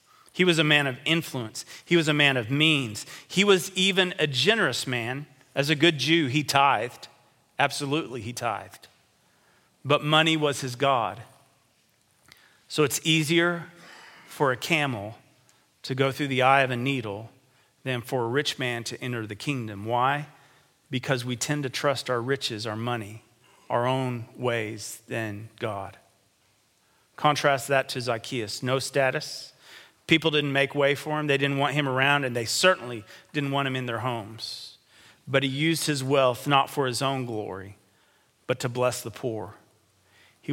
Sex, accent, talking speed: male, American, 165 wpm